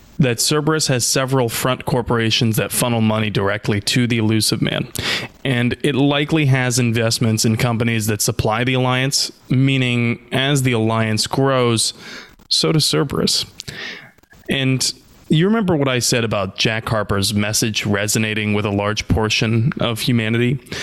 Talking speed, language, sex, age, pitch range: 145 wpm, English, male, 20-39, 110-135 Hz